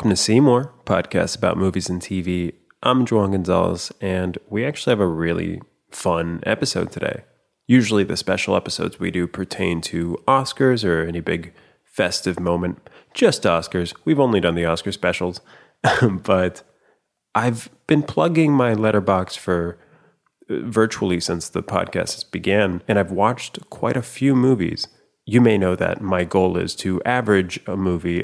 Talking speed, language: 155 wpm, English